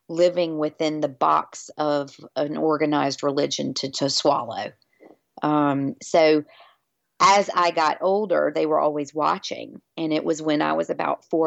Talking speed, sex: 150 wpm, female